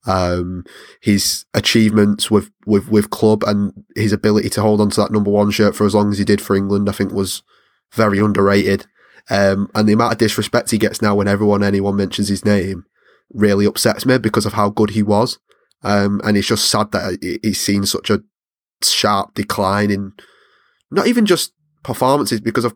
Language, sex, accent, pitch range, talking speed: English, male, British, 100-110 Hz, 195 wpm